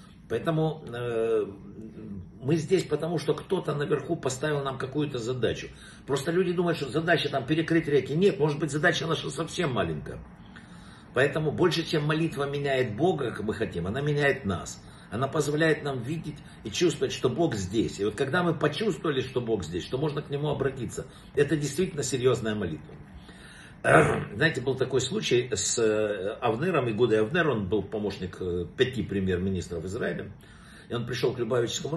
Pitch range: 110-165 Hz